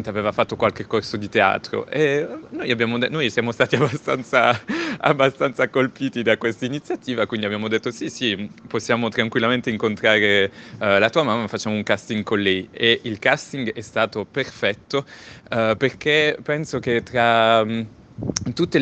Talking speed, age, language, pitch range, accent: 150 wpm, 30-49, Italian, 110-125 Hz, native